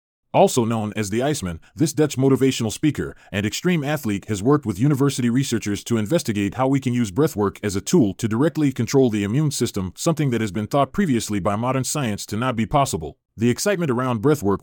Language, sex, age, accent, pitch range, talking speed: English, male, 30-49, American, 105-140 Hz, 205 wpm